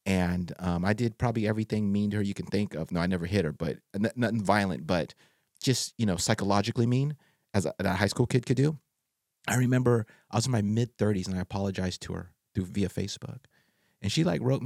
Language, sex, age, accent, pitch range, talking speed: English, male, 30-49, American, 100-130 Hz, 230 wpm